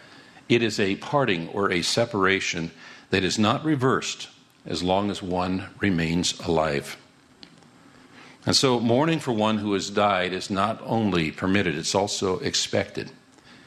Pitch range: 90-120 Hz